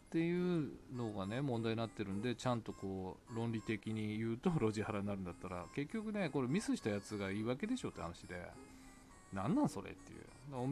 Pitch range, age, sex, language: 100-135 Hz, 20-39, male, Japanese